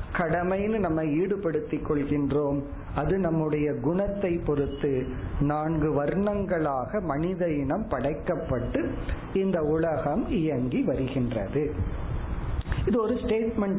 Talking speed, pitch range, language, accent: 50 wpm, 145-195 Hz, Tamil, native